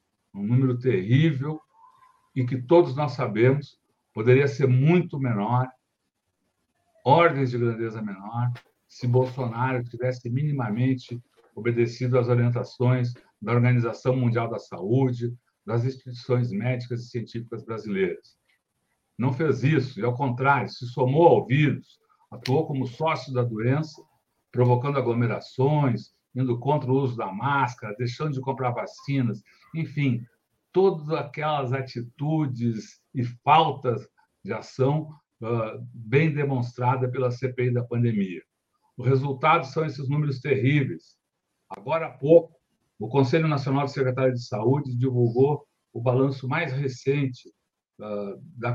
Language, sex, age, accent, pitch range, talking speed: Portuguese, male, 60-79, Brazilian, 120-145 Hz, 120 wpm